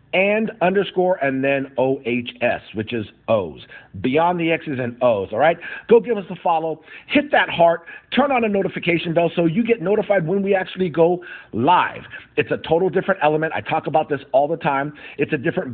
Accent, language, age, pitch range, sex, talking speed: American, English, 50-69, 140-195 Hz, male, 200 wpm